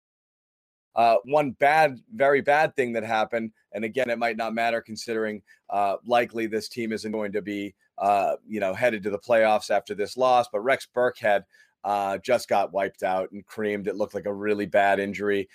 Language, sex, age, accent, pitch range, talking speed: English, male, 30-49, American, 105-125 Hz, 190 wpm